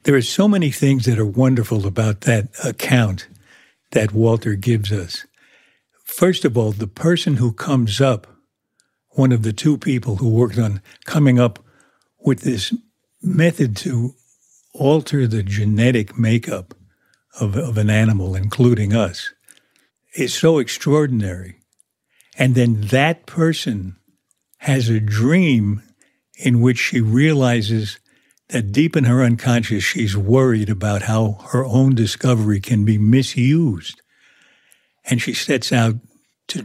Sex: male